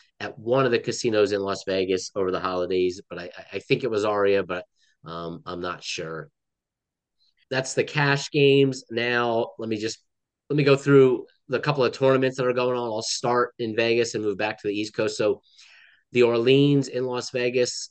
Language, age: English, 30-49